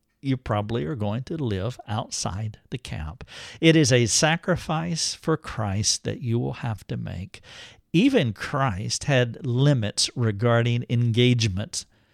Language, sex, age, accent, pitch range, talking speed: English, male, 50-69, American, 115-150 Hz, 135 wpm